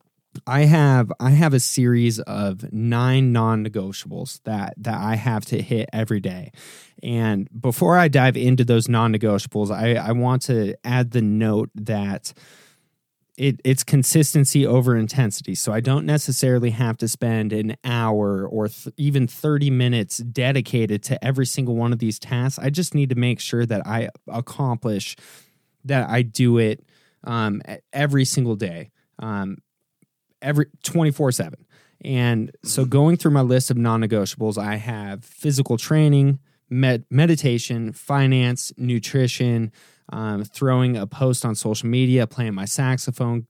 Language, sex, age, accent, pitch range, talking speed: English, male, 20-39, American, 110-135 Hz, 145 wpm